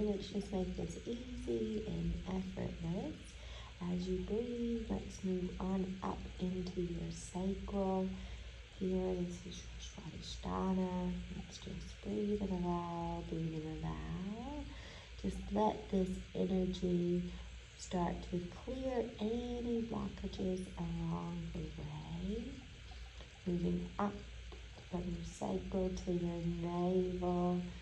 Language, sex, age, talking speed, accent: English, female, 30-49, 100 wpm, American